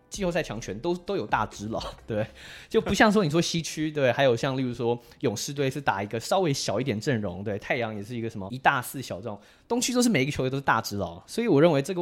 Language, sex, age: Chinese, male, 20-39